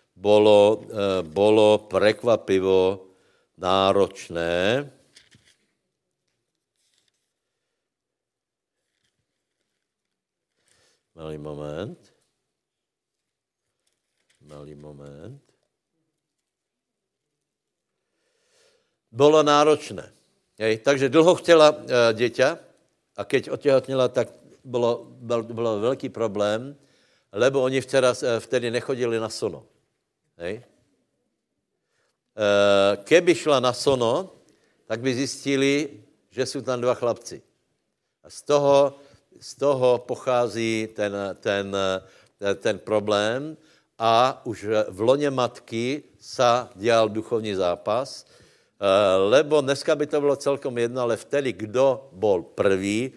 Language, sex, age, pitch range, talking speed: Slovak, male, 60-79, 105-140 Hz, 80 wpm